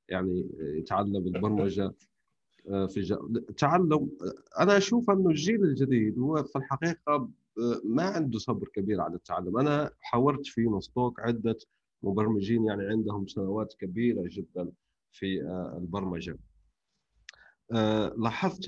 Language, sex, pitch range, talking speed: Arabic, male, 100-140 Hz, 110 wpm